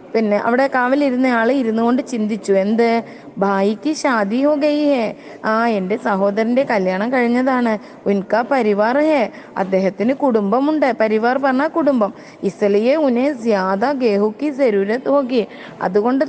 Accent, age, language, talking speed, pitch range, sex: native, 20-39, Malayalam, 105 wpm, 205-265 Hz, female